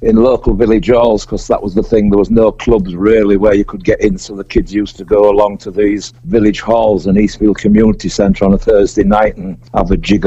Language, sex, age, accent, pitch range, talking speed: English, male, 60-79, British, 100-115 Hz, 245 wpm